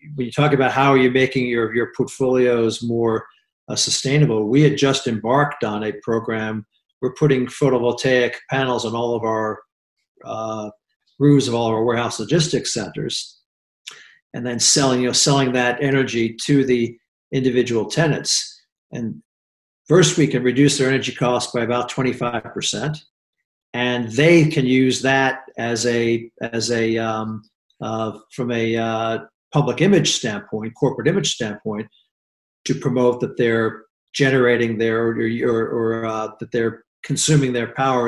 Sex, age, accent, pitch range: male, 50-69, American, 110-130 Hz